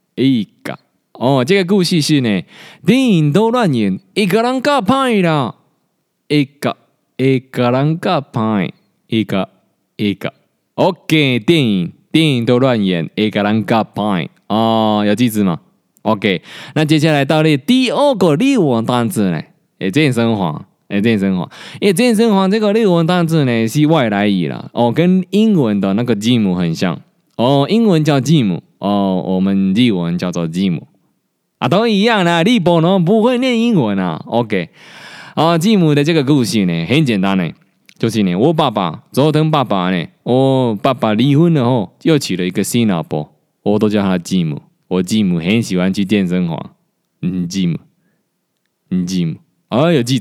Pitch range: 105-170 Hz